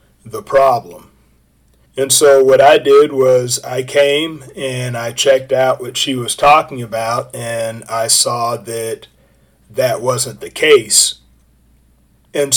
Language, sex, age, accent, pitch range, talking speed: English, male, 40-59, American, 125-150 Hz, 135 wpm